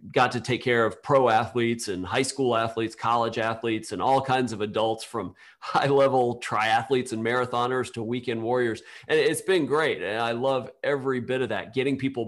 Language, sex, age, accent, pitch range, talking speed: English, male, 40-59, American, 110-125 Hz, 195 wpm